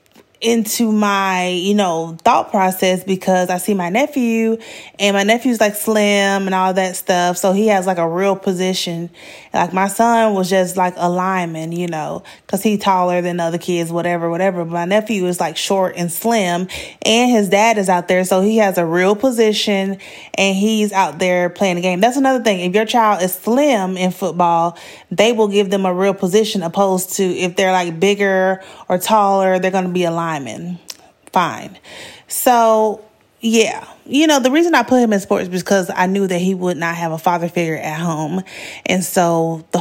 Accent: American